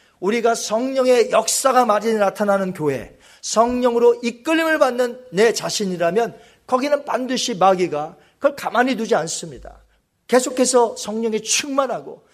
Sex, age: male, 40-59